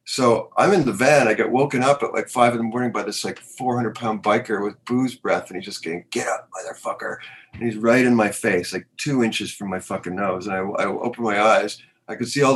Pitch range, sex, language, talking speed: 110-120 Hz, male, English, 260 wpm